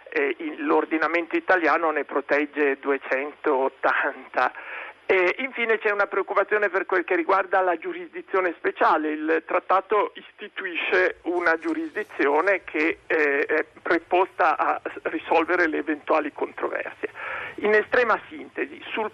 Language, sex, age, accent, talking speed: Italian, male, 50-69, native, 115 wpm